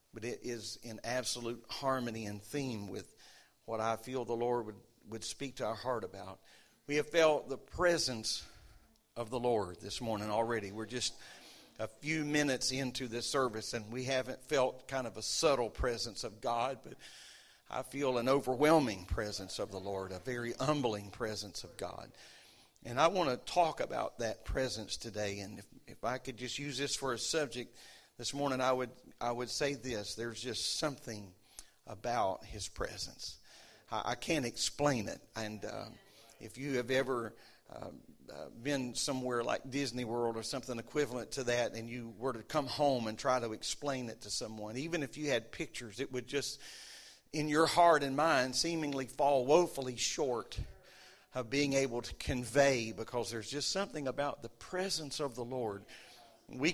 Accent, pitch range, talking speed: American, 115-140 Hz, 180 wpm